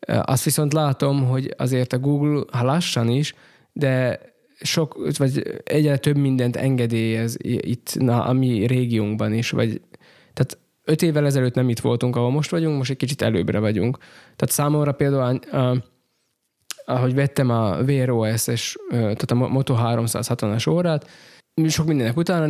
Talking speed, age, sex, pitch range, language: 140 wpm, 20-39, male, 115-135 Hz, Hungarian